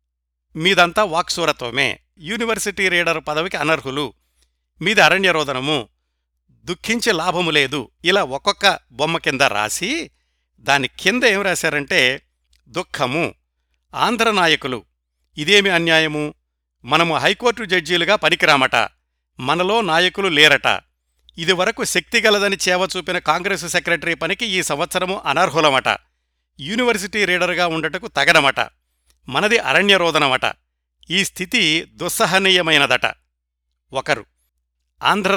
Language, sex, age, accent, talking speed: Telugu, male, 60-79, native, 90 wpm